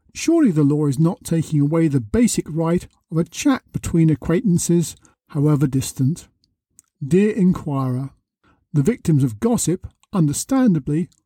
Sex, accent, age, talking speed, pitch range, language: male, British, 50-69, 130 wpm, 150-195 Hz, English